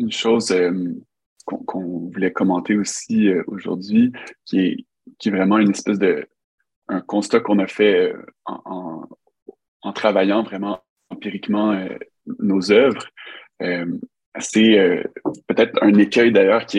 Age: 20-39